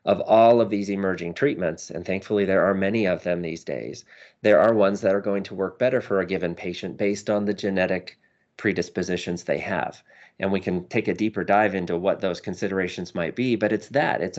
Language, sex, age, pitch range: English, male, 30-49, 90-105 Hz